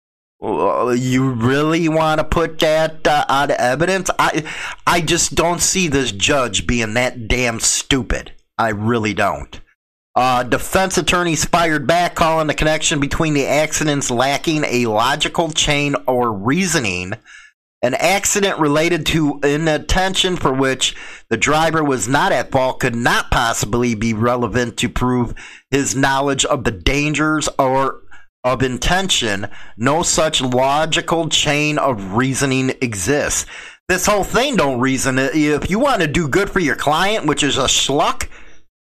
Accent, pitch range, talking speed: American, 125-155 Hz, 145 wpm